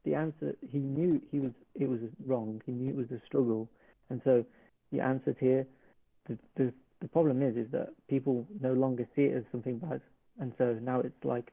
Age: 40-59